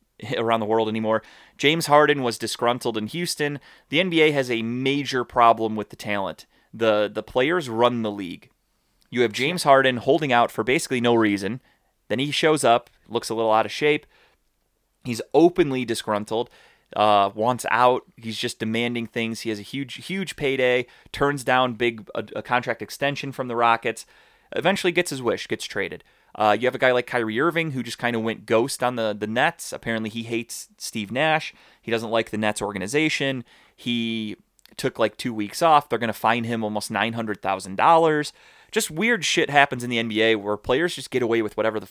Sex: male